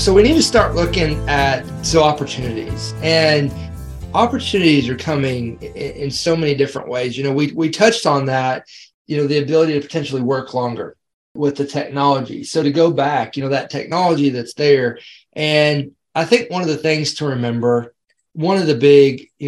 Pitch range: 130-160 Hz